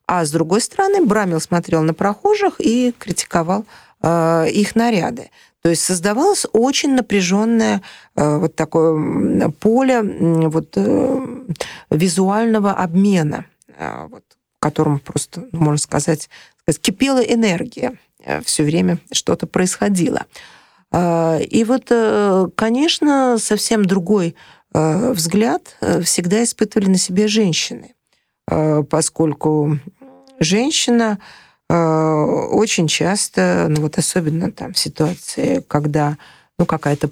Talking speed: 115 wpm